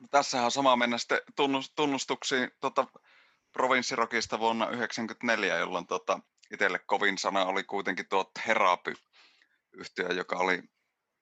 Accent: native